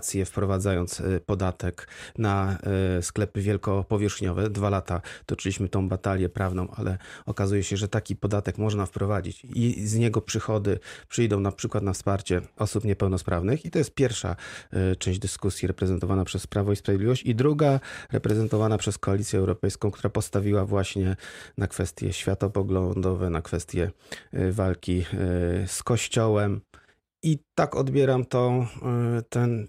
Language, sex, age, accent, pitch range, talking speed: Polish, male, 30-49, native, 95-110 Hz, 125 wpm